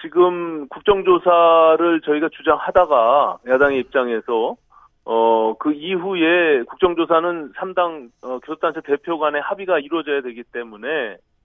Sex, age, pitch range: male, 40-59, 135-175 Hz